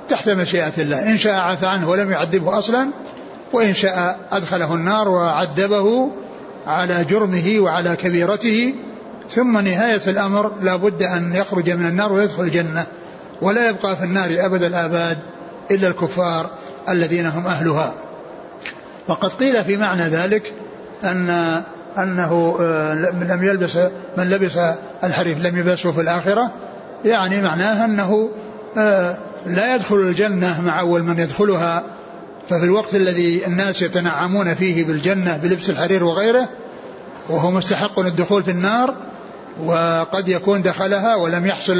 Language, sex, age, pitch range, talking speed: Arabic, male, 60-79, 175-205 Hz, 125 wpm